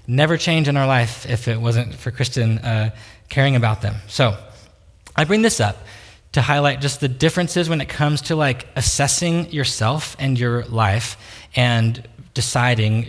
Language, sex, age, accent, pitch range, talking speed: English, male, 20-39, American, 115-145 Hz, 165 wpm